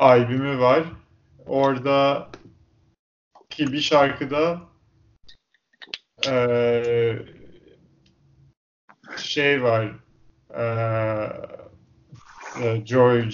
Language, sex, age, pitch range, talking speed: Turkish, male, 30-49, 115-140 Hz, 45 wpm